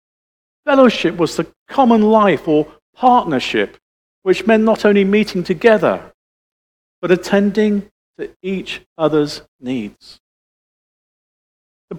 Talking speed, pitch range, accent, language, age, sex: 100 wpm, 155-215 Hz, British, English, 50-69, male